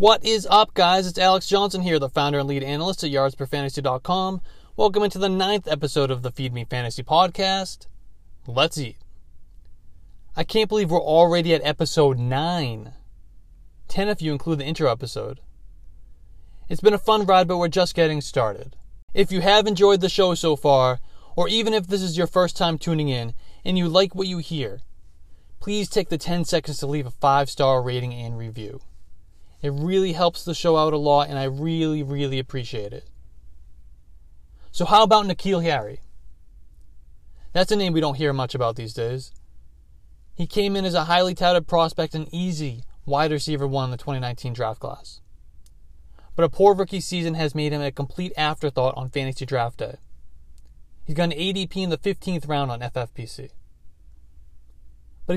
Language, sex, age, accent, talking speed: English, male, 20-39, American, 175 wpm